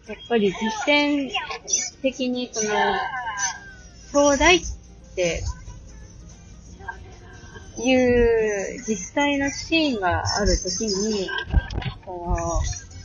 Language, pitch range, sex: Japanese, 160-225 Hz, female